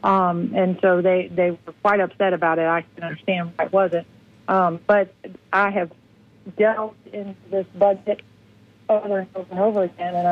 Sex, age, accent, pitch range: female, 50-69, American, 175-205 Hz